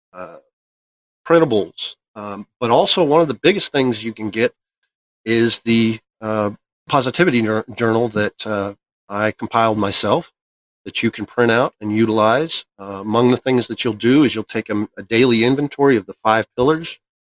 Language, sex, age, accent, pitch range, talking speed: English, male, 40-59, American, 105-125 Hz, 165 wpm